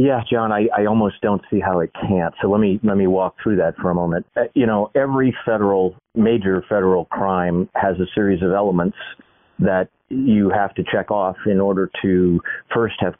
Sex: male